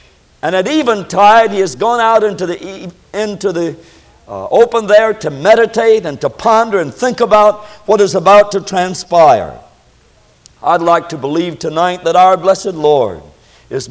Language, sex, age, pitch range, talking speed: English, male, 60-79, 170-235 Hz, 155 wpm